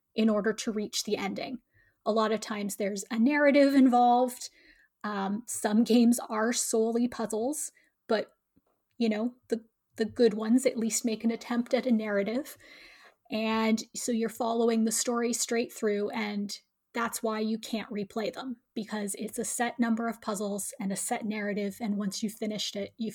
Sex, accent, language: female, American, English